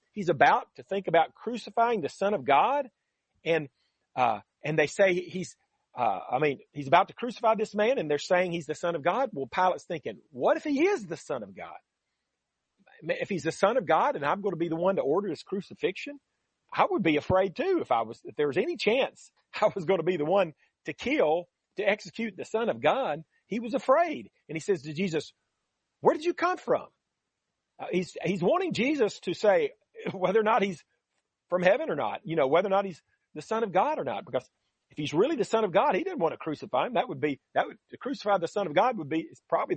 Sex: male